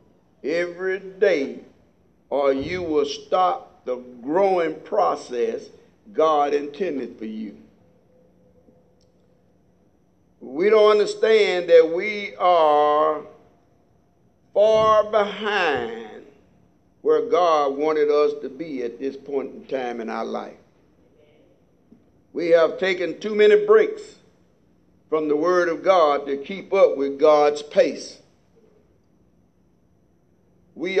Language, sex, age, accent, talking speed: English, male, 60-79, American, 105 wpm